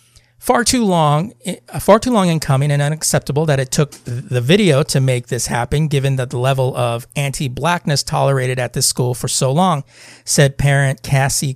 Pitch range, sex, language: 130-165 Hz, male, English